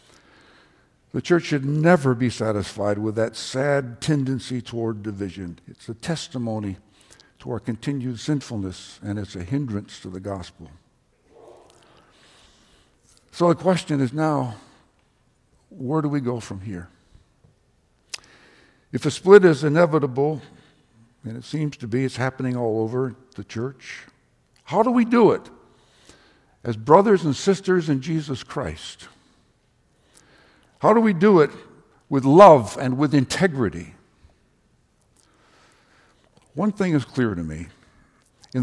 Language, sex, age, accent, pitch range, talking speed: English, male, 60-79, American, 110-155 Hz, 125 wpm